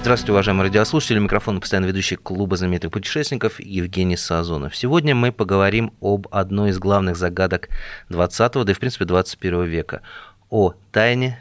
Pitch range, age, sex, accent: 95-120 Hz, 30-49, male, native